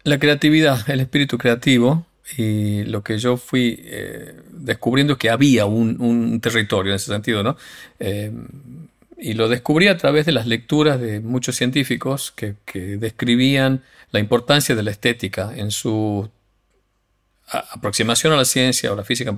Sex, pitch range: male, 105-130 Hz